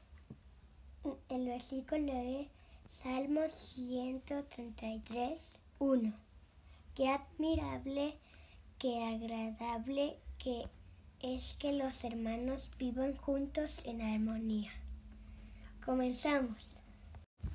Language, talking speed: Spanish, 70 wpm